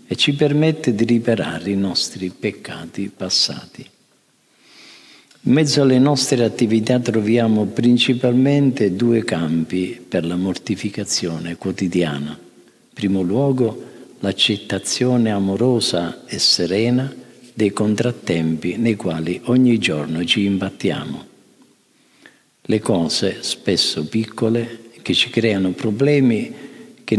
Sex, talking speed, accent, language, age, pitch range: male, 100 wpm, native, Italian, 50-69, 95-120 Hz